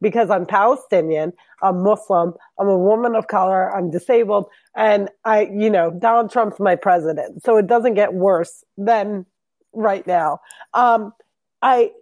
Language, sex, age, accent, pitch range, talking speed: English, female, 30-49, American, 190-235 Hz, 150 wpm